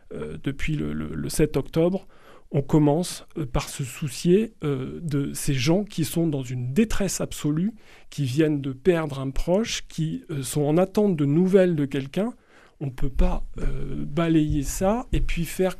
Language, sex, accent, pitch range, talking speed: French, male, French, 145-190 Hz, 180 wpm